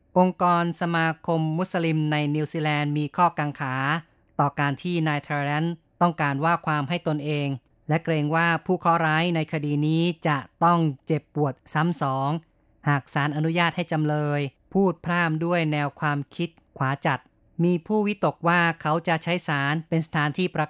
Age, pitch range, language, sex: 20-39, 150-175 Hz, Thai, female